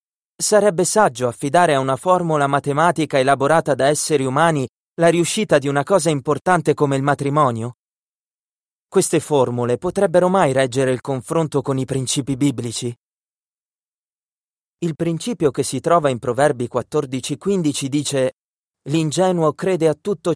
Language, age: Italian, 30-49